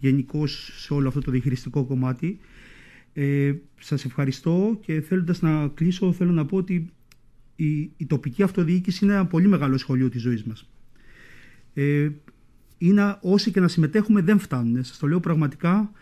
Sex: male